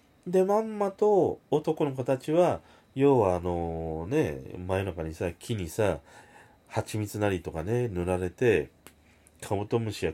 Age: 30-49